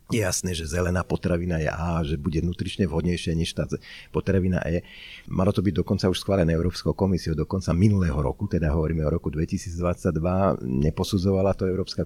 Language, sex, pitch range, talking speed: Slovak, male, 85-100 Hz, 170 wpm